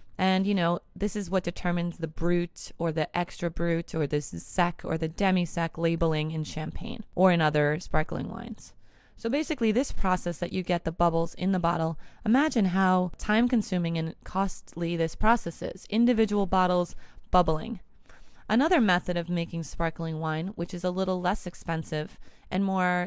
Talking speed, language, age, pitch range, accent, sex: 165 wpm, English, 20-39, 170-200 Hz, American, female